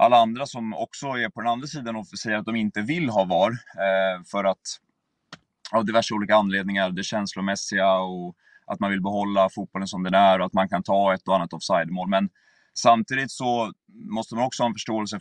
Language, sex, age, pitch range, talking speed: Swedish, male, 20-39, 95-115 Hz, 205 wpm